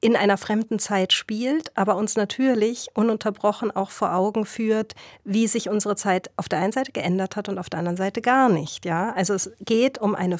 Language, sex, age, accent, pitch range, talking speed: German, female, 40-59, German, 180-220 Hz, 210 wpm